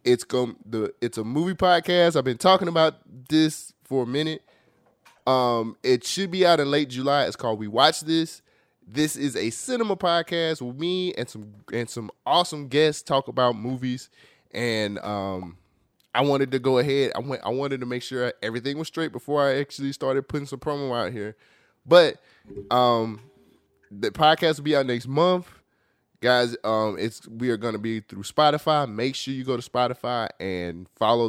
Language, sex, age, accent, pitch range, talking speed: English, male, 20-39, American, 115-150 Hz, 185 wpm